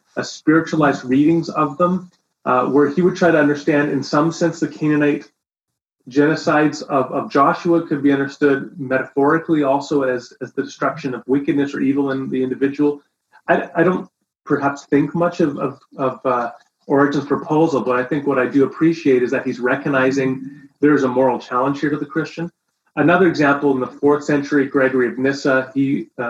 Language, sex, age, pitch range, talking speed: English, male, 30-49, 135-155 Hz, 180 wpm